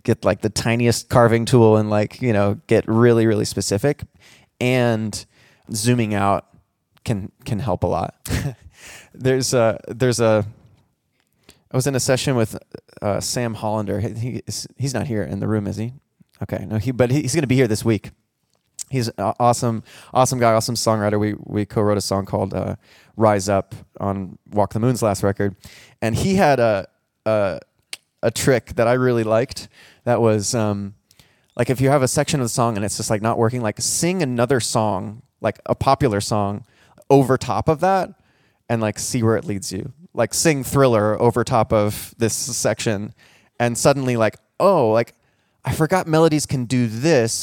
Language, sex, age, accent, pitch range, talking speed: English, male, 20-39, American, 105-130 Hz, 180 wpm